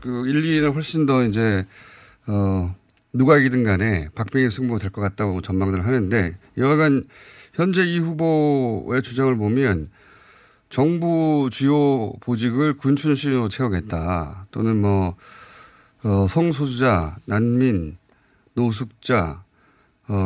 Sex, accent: male, native